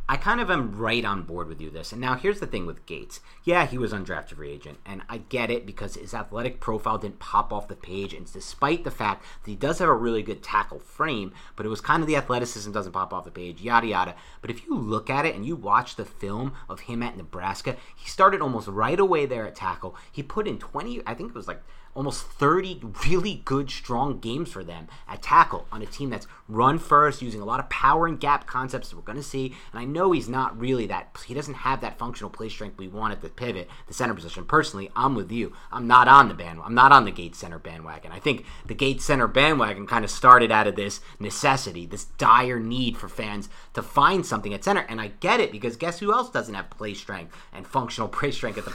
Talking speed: 245 wpm